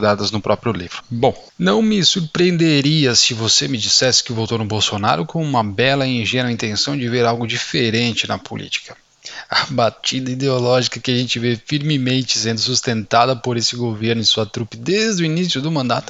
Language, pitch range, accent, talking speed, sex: Portuguese, 120-160 Hz, Brazilian, 180 wpm, male